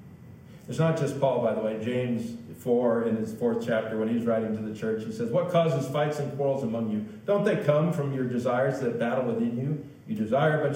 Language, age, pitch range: English, 50-69, 125-175 Hz